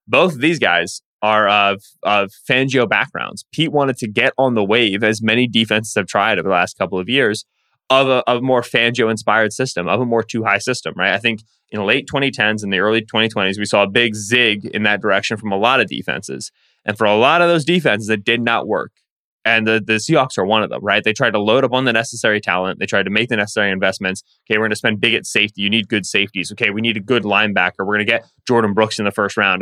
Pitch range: 105-125 Hz